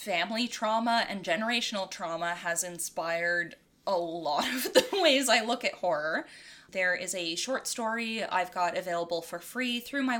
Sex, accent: female, American